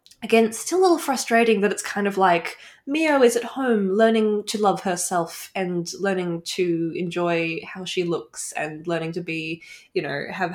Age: 10-29